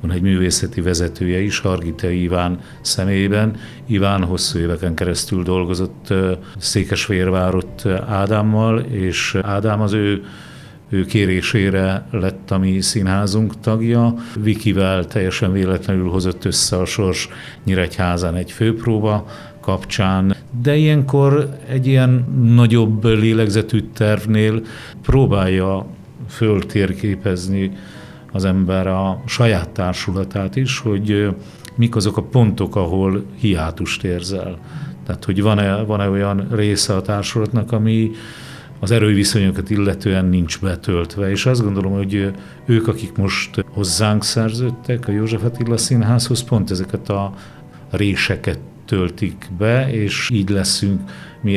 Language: Hungarian